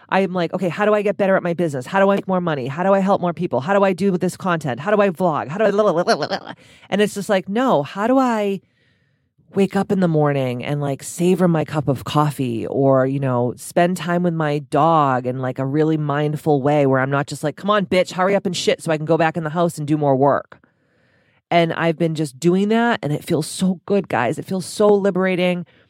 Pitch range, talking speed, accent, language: 145-185 Hz, 270 wpm, American, English